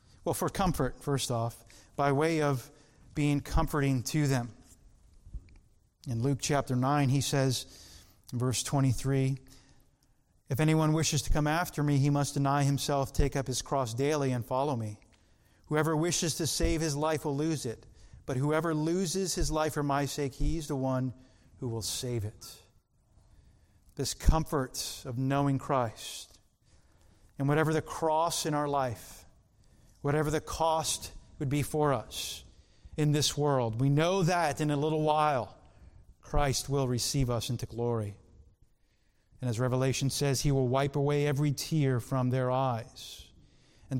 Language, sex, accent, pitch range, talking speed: English, male, American, 110-145 Hz, 155 wpm